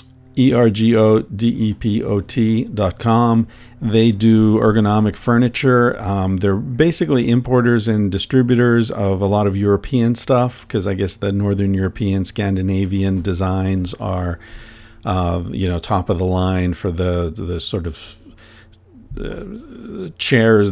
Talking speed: 120 wpm